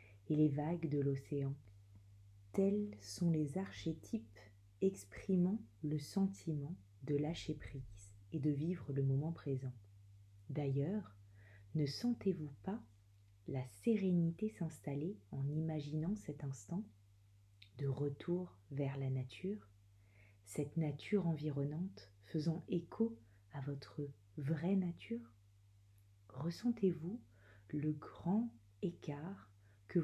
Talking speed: 100 wpm